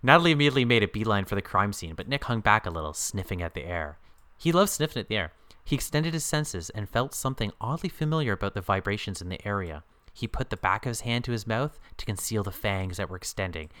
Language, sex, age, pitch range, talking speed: English, male, 30-49, 90-115 Hz, 250 wpm